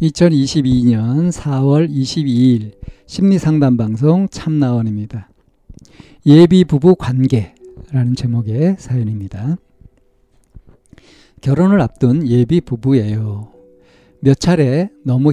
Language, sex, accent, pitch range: Korean, male, native, 120-165 Hz